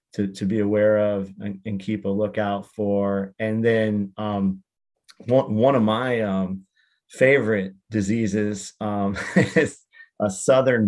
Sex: male